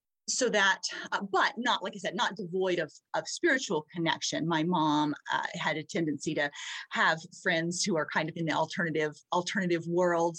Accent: American